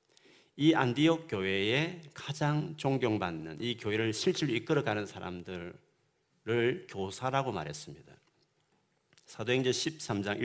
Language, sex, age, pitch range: Korean, male, 40-59, 95-135 Hz